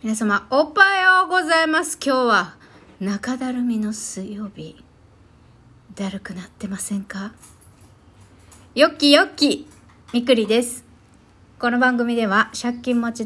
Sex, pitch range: female, 165-220 Hz